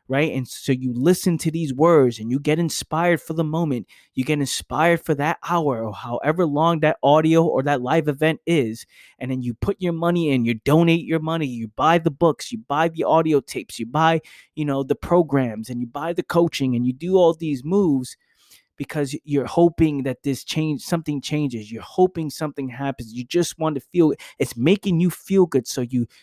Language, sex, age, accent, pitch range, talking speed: English, male, 20-39, American, 125-160 Hz, 215 wpm